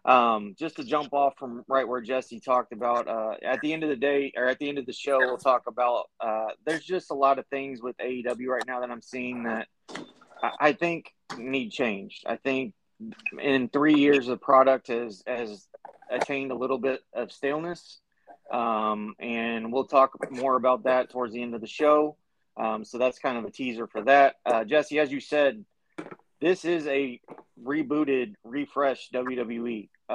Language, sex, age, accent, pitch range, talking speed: English, male, 30-49, American, 115-145 Hz, 190 wpm